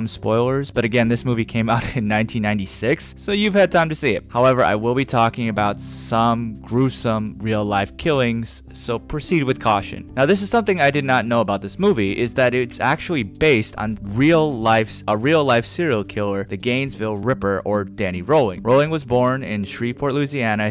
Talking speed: 190 wpm